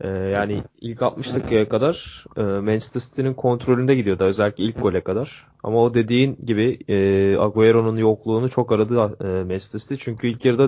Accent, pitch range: native, 100-125 Hz